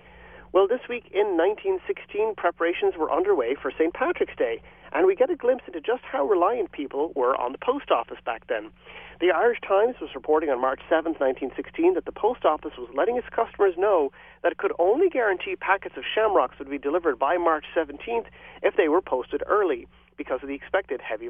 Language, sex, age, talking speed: English, male, 40-59, 200 wpm